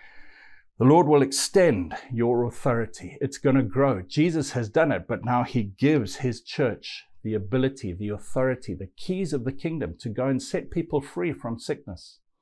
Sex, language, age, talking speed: male, English, 50-69, 180 wpm